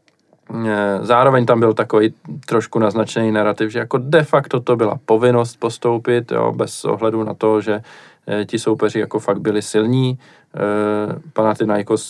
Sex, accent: male, native